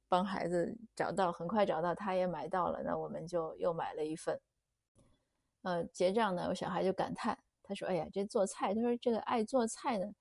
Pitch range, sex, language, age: 180-220 Hz, female, Chinese, 30-49